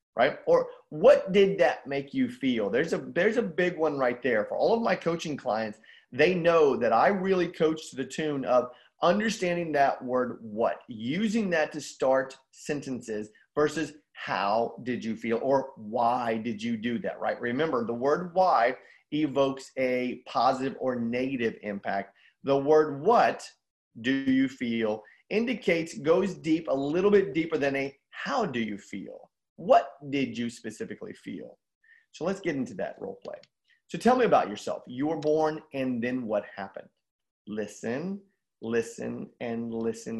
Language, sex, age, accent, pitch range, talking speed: English, male, 30-49, American, 125-180 Hz, 165 wpm